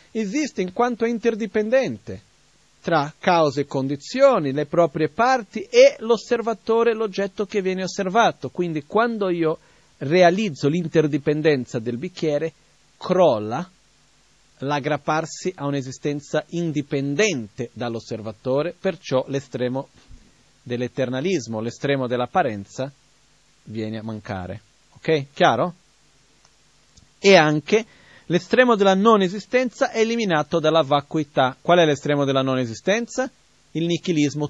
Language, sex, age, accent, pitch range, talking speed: Italian, male, 40-59, native, 140-205 Hz, 105 wpm